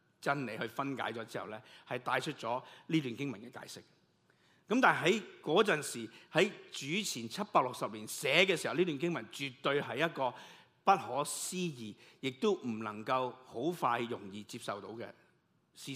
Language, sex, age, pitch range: Chinese, male, 50-69, 120-160 Hz